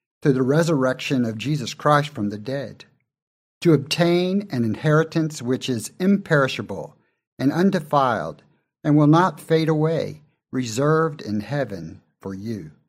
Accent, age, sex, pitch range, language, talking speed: American, 50-69, male, 115-155 Hz, English, 125 wpm